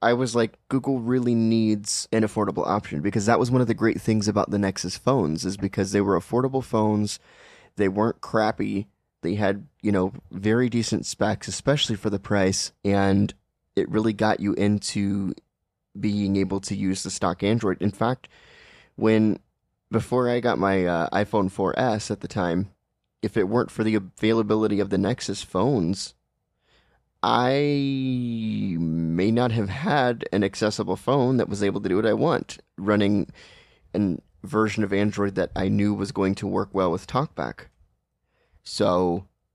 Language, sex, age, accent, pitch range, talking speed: English, male, 20-39, American, 95-110 Hz, 165 wpm